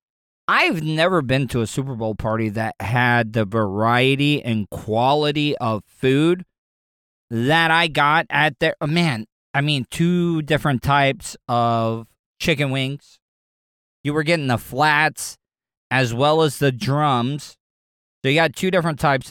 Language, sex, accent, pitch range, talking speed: English, male, American, 115-150 Hz, 140 wpm